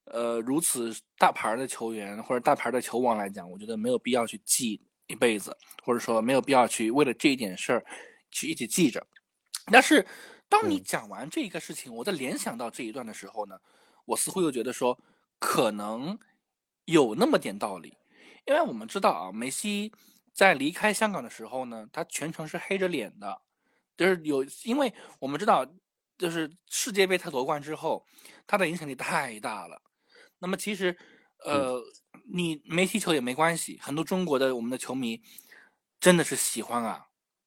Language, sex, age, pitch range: Chinese, male, 20-39, 125-205 Hz